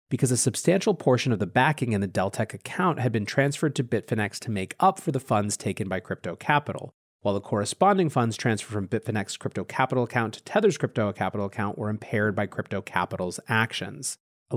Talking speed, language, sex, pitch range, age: 200 wpm, English, male, 100-140 Hz, 30-49